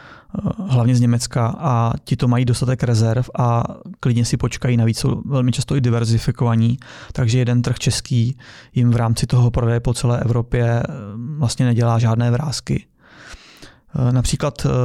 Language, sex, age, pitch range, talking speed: Czech, male, 20-39, 120-140 Hz, 145 wpm